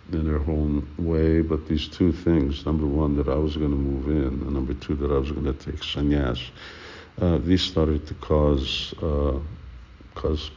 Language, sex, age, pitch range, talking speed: English, male, 60-79, 70-85 Hz, 195 wpm